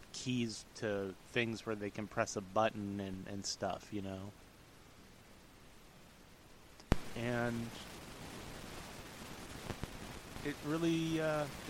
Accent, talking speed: American, 90 wpm